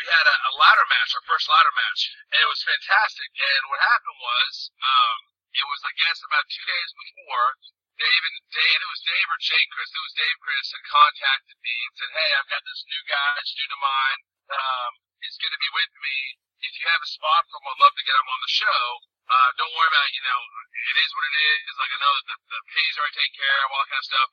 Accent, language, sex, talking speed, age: American, English, male, 260 wpm, 40-59